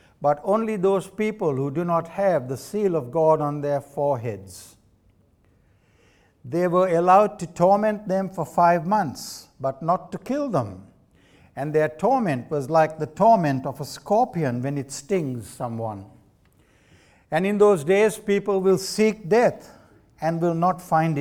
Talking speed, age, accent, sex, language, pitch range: 155 wpm, 60-79, Indian, male, English, 130-180 Hz